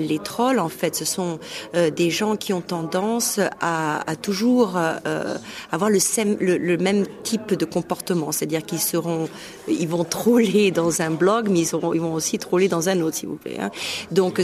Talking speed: 205 wpm